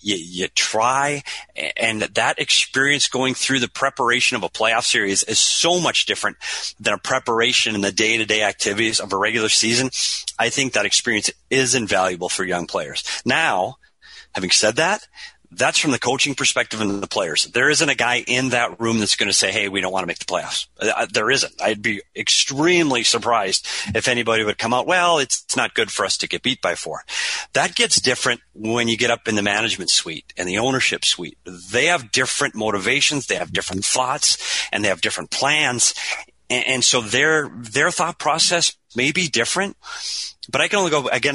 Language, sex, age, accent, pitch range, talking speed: English, male, 40-59, American, 110-135 Hz, 195 wpm